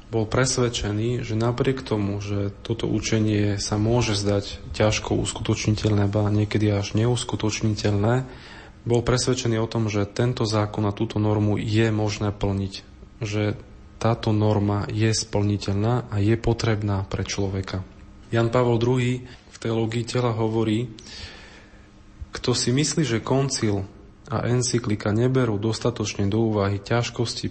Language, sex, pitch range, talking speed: Slovak, male, 105-115 Hz, 130 wpm